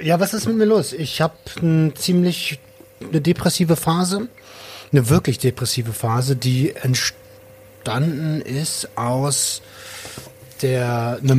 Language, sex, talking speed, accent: German, male, 115 wpm, German